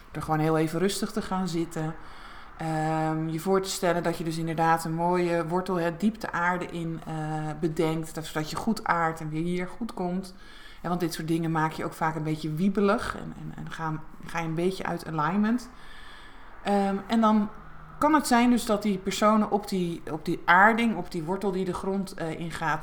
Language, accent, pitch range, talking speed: Dutch, Dutch, 160-195 Hz, 210 wpm